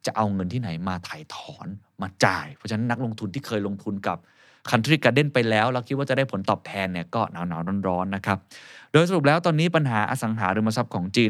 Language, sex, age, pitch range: Thai, male, 20-39, 95-120 Hz